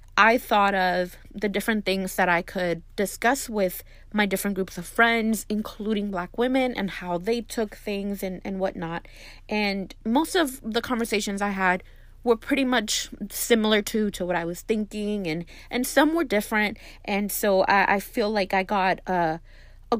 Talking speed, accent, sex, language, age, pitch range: 175 wpm, American, female, English, 20-39, 180-215 Hz